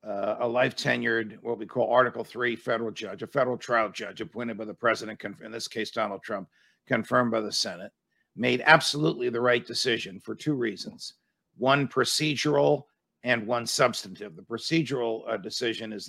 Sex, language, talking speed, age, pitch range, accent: male, English, 170 wpm, 50-69, 115-130 Hz, American